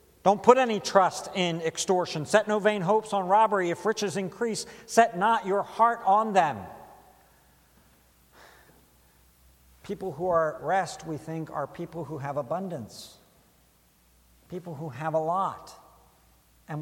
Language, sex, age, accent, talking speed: English, male, 60-79, American, 140 wpm